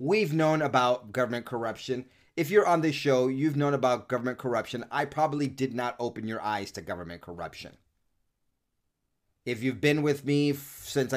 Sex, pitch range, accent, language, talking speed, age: male, 95-135 Hz, American, English, 165 wpm, 30-49